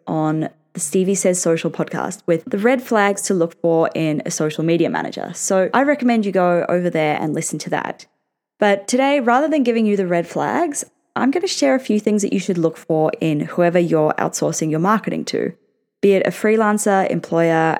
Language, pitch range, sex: English, 165-225 Hz, female